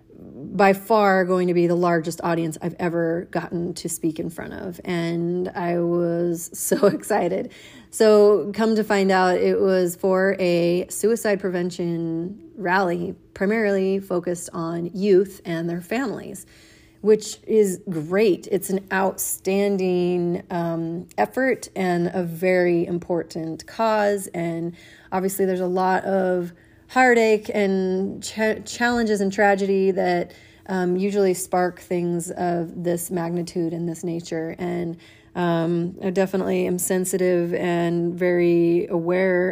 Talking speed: 130 wpm